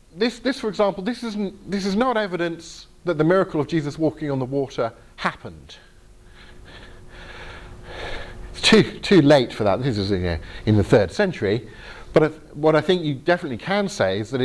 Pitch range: 100-145 Hz